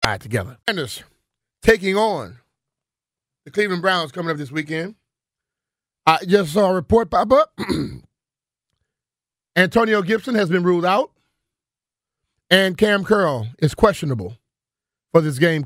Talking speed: 130 wpm